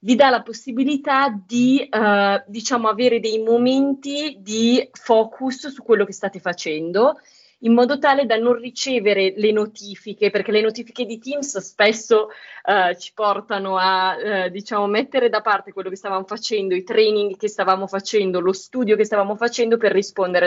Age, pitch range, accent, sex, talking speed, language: 30-49, 190-235 Hz, native, female, 165 wpm, Italian